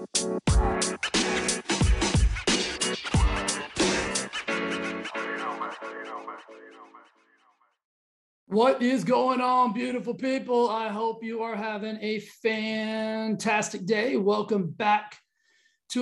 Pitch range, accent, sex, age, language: 180-225 Hz, American, male, 30-49, English